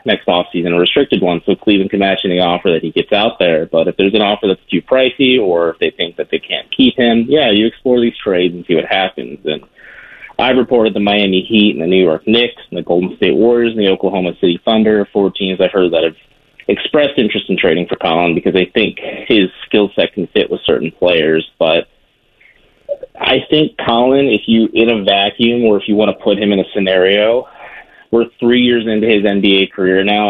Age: 30-49